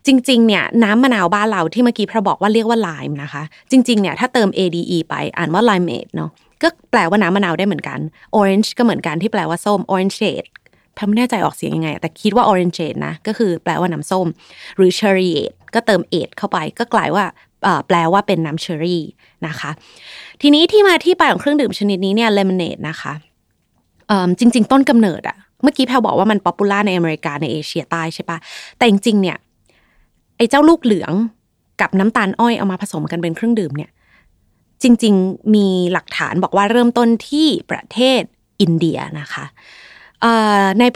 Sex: female